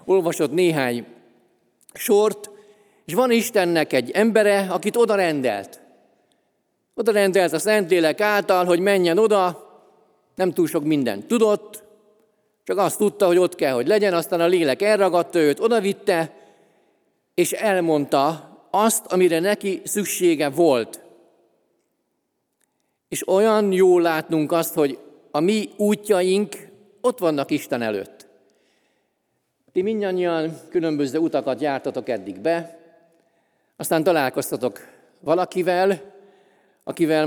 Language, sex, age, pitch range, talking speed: Hungarian, male, 50-69, 165-205 Hz, 115 wpm